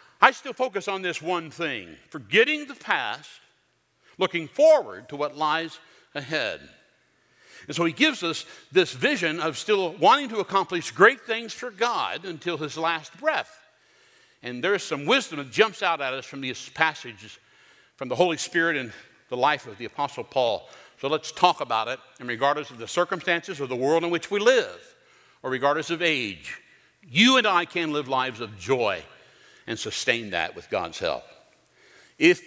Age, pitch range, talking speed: 60-79, 140-200 Hz, 175 wpm